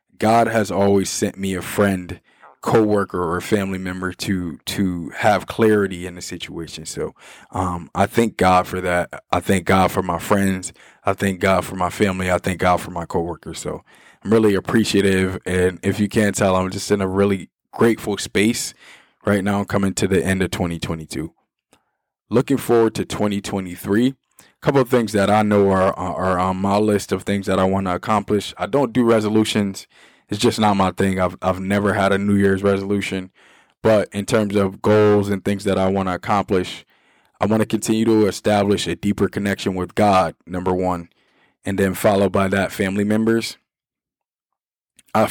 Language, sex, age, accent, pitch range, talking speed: English, male, 20-39, American, 95-105 Hz, 190 wpm